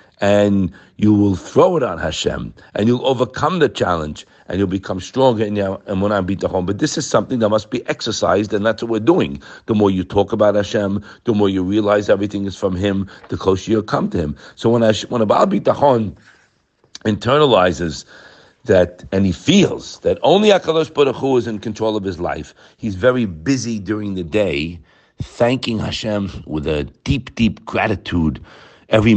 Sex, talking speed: male, 190 wpm